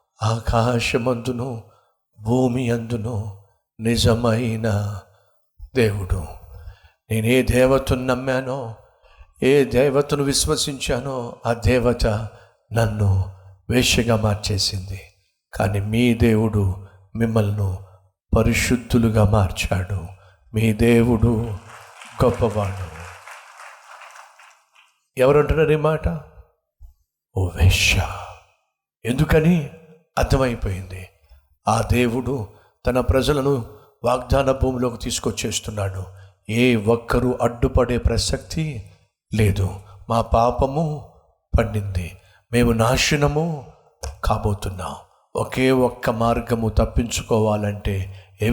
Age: 60-79